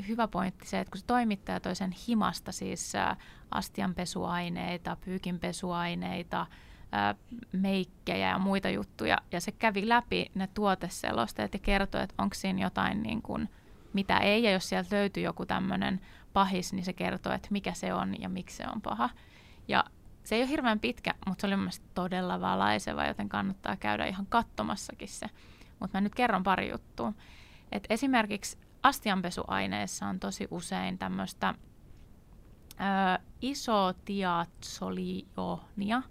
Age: 20-39